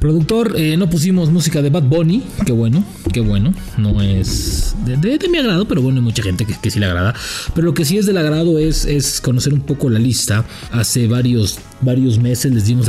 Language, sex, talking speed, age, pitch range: English, male, 235 wpm, 30-49, 110-130 Hz